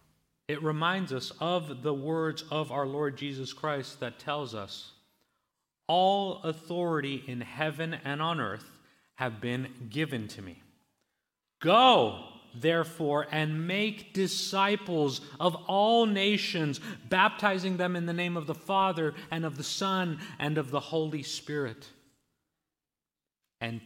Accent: American